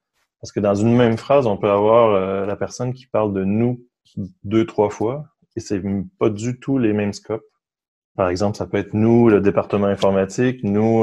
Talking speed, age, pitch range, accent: 200 wpm, 20-39, 100-120 Hz, French